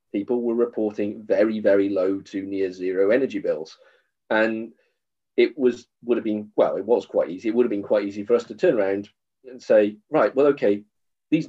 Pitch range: 100-120 Hz